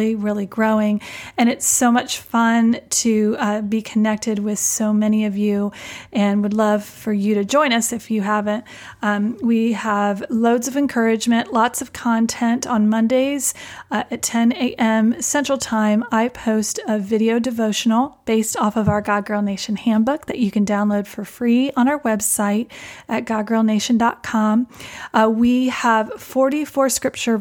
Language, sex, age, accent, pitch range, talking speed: English, female, 30-49, American, 210-240 Hz, 160 wpm